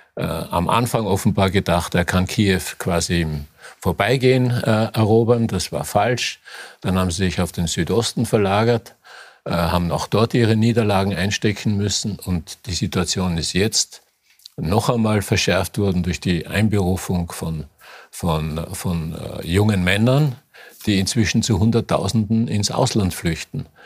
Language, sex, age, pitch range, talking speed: German, male, 50-69, 90-115 Hz, 145 wpm